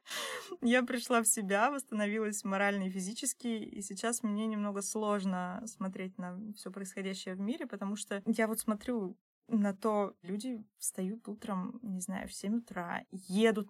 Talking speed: 155 wpm